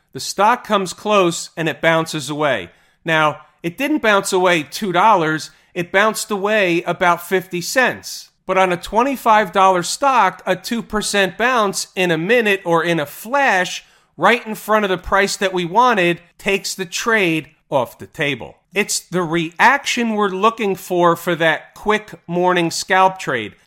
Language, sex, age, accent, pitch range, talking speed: English, male, 40-59, American, 170-215 Hz, 155 wpm